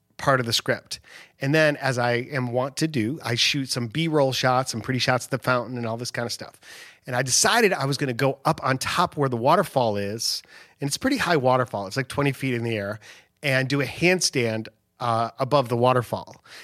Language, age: English, 30-49